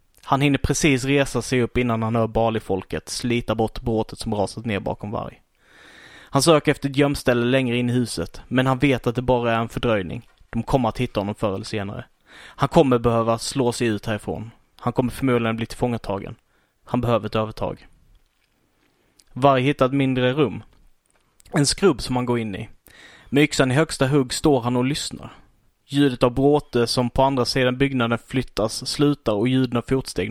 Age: 20-39